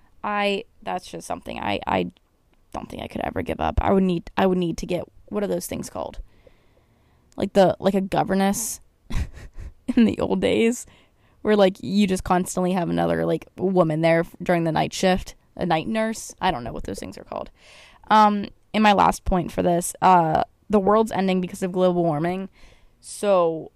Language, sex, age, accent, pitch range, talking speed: English, female, 10-29, American, 170-205 Hz, 190 wpm